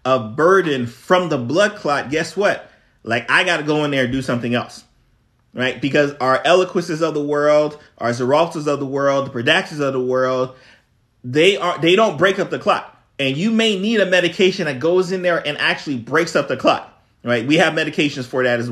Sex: male